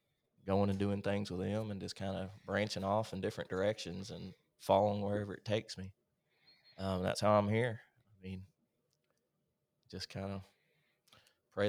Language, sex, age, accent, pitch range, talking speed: English, male, 20-39, American, 95-105 Hz, 165 wpm